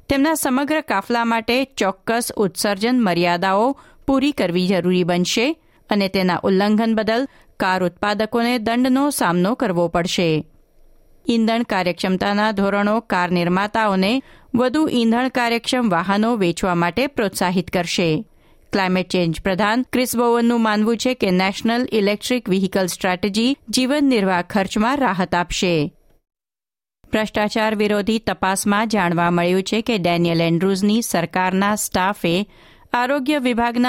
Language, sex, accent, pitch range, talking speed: Gujarati, female, native, 185-235 Hz, 110 wpm